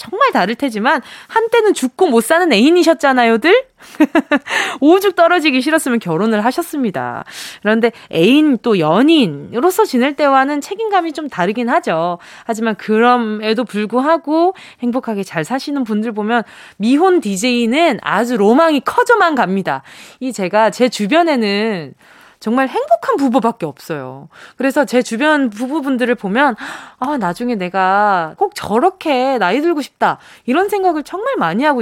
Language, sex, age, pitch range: Korean, female, 20-39, 220-330 Hz